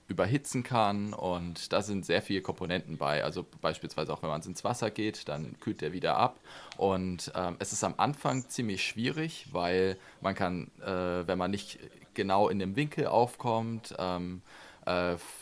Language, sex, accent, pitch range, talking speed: German, male, German, 90-115 Hz, 170 wpm